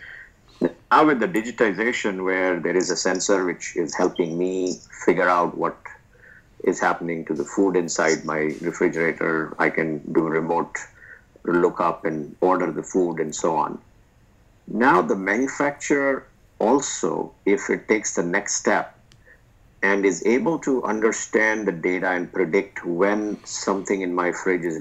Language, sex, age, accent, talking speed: English, male, 50-69, Indian, 150 wpm